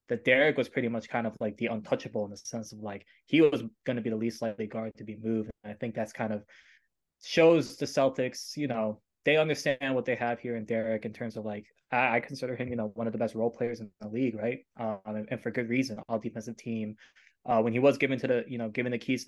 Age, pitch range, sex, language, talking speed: 20-39, 115-135 Hz, male, English, 270 wpm